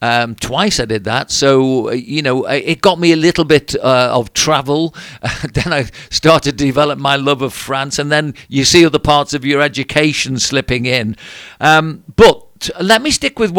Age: 50-69